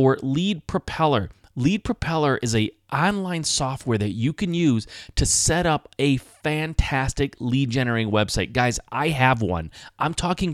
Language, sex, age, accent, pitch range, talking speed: English, male, 30-49, American, 115-155 Hz, 155 wpm